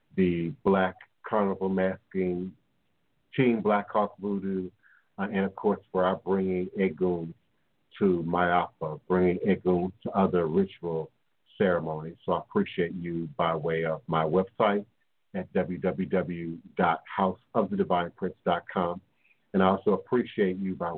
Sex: male